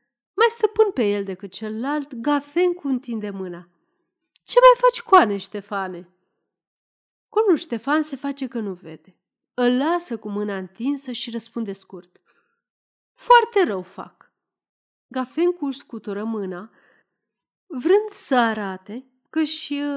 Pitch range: 205-305 Hz